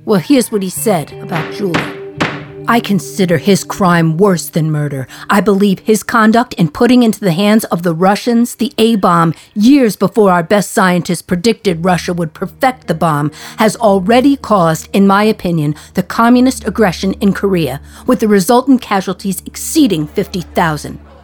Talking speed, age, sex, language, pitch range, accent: 160 wpm, 50-69, female, English, 155-220 Hz, American